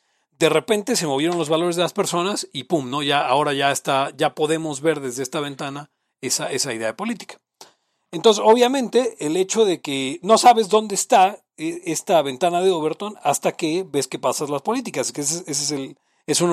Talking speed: 200 wpm